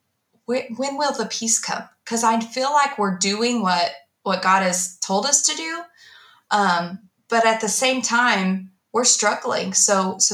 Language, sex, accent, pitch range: English, female, American, 175-220 Hz